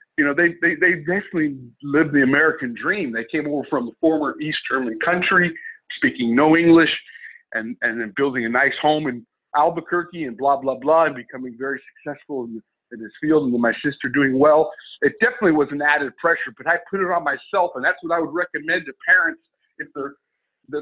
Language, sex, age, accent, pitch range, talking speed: English, male, 50-69, American, 130-175 Hz, 210 wpm